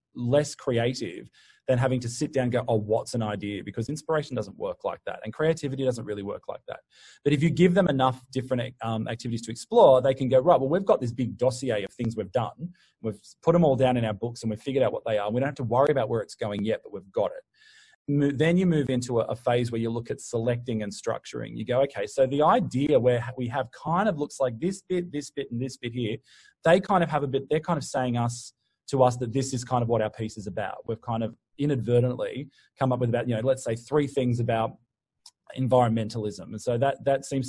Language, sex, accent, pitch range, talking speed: English, male, Australian, 115-145 Hz, 255 wpm